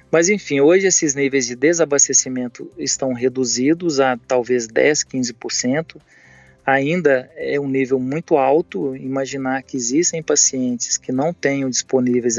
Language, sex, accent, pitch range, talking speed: Portuguese, male, Brazilian, 125-155 Hz, 130 wpm